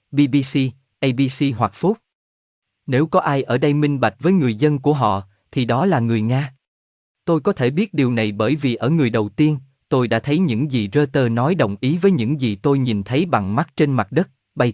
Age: 20-39